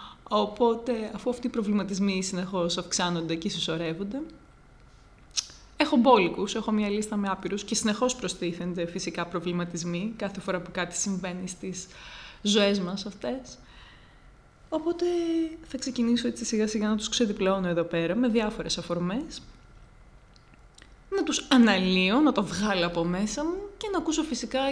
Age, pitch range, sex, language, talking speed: 20-39, 180-240 Hz, female, Greek, 140 wpm